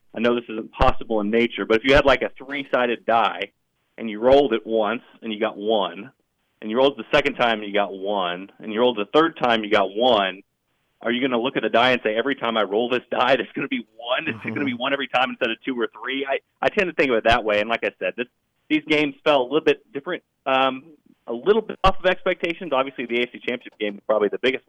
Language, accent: English, American